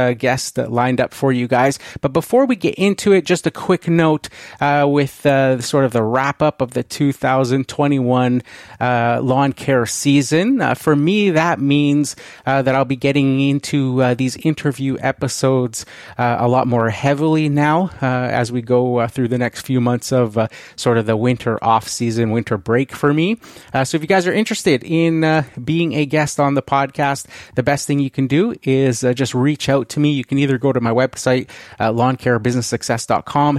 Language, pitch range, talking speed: English, 125-150 Hz, 200 wpm